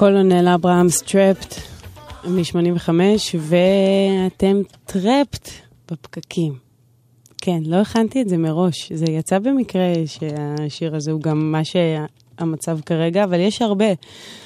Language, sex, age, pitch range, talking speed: Hebrew, female, 20-39, 155-185 Hz, 110 wpm